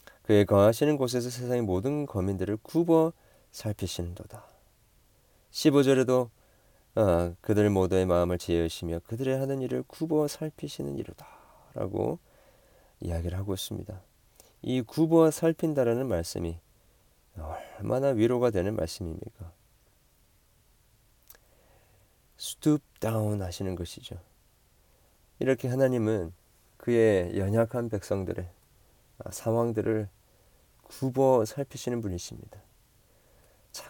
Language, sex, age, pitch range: Korean, male, 40-59, 95-140 Hz